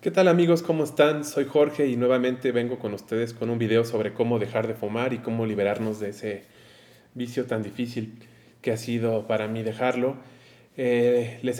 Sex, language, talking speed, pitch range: male, Spanish, 185 wpm, 115-130 Hz